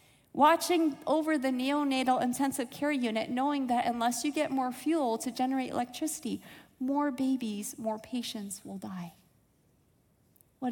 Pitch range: 200-265 Hz